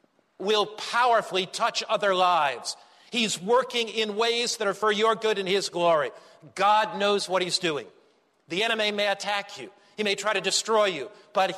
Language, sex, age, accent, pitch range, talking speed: English, male, 50-69, American, 200-250 Hz, 175 wpm